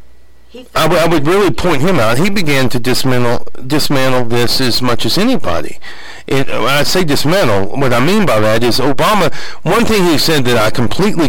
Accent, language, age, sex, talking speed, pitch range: American, English, 50-69, male, 195 wpm, 115-160 Hz